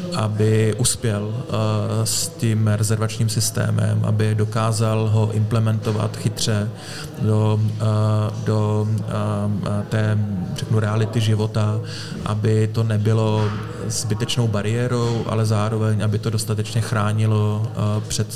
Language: Czech